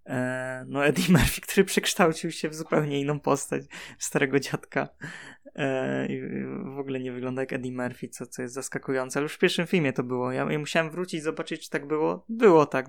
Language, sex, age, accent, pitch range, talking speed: Polish, male, 20-39, native, 135-160 Hz, 180 wpm